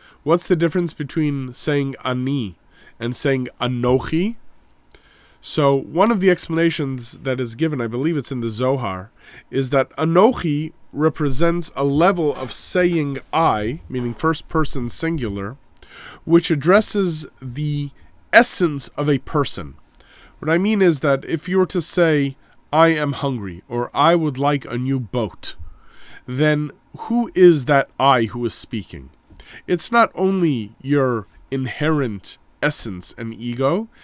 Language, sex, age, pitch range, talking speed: English, male, 30-49, 125-170 Hz, 140 wpm